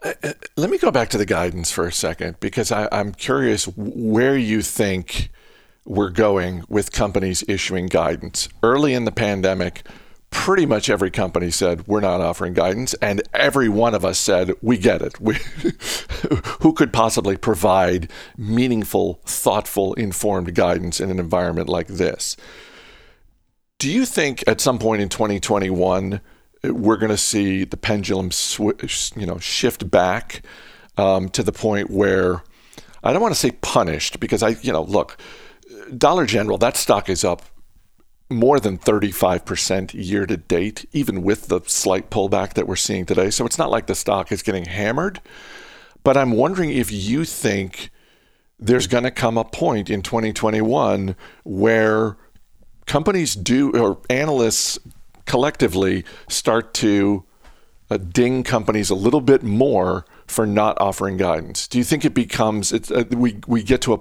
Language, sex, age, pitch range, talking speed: English, male, 50-69, 95-120 Hz, 155 wpm